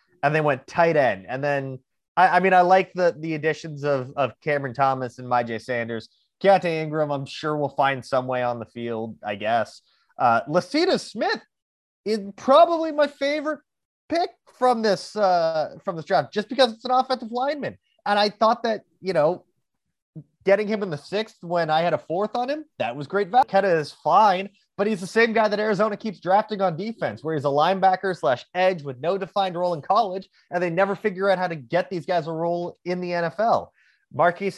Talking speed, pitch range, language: 205 wpm, 150-210 Hz, English